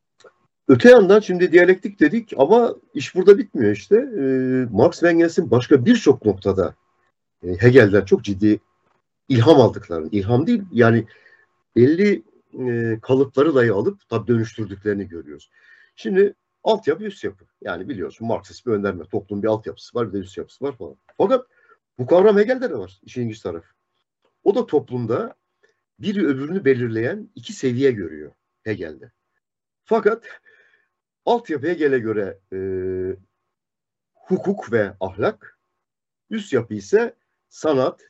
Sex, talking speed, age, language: male, 130 wpm, 50-69, Turkish